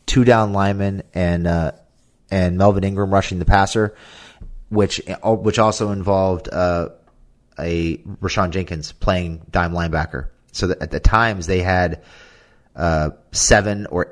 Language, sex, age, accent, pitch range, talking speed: English, male, 30-49, American, 85-100 Hz, 135 wpm